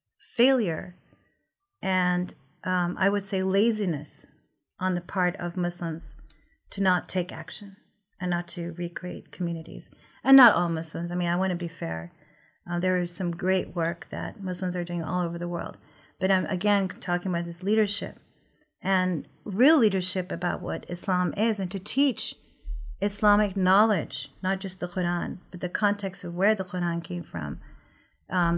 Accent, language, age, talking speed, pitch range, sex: American, English, 40-59, 165 wpm, 175-205 Hz, female